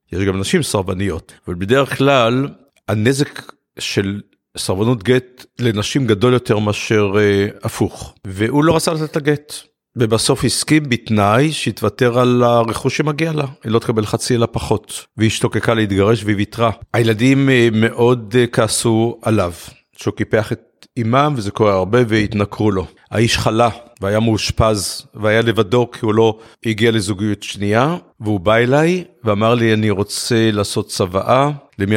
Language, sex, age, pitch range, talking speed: Hebrew, male, 50-69, 105-130 Hz, 145 wpm